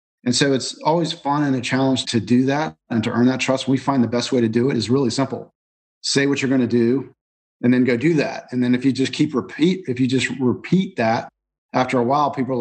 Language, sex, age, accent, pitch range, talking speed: English, male, 40-59, American, 115-135 Hz, 260 wpm